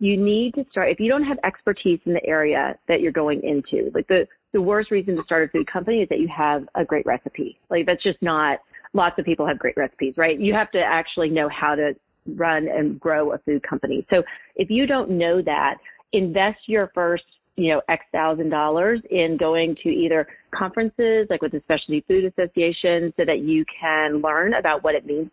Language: English